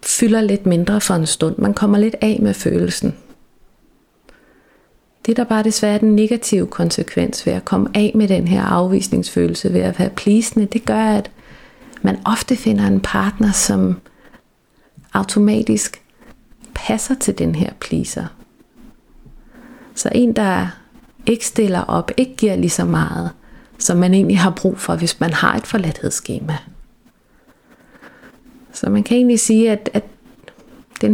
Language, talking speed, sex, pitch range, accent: Danish, 150 wpm, female, 180-225 Hz, native